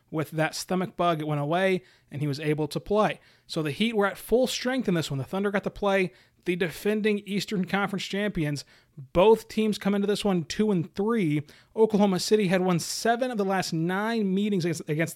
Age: 30-49